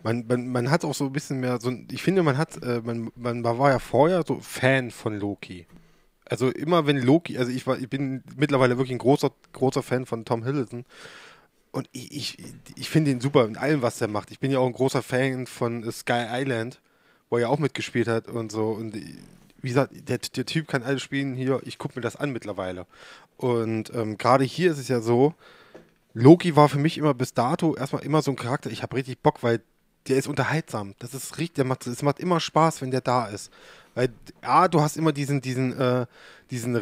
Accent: German